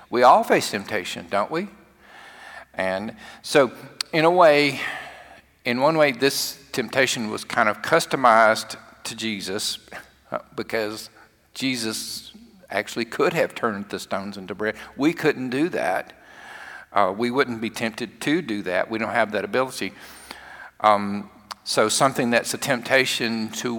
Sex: male